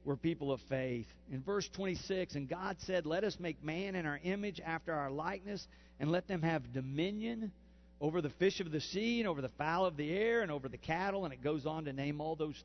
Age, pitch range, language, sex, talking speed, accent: 50-69, 125-185 Hz, English, male, 235 wpm, American